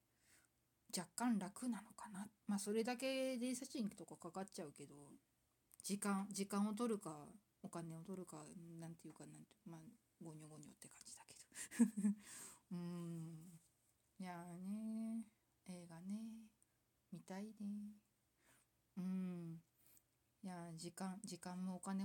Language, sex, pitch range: Japanese, female, 175-225 Hz